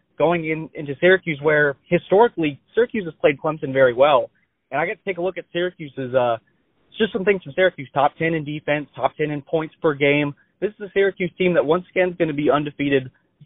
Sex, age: male, 20-39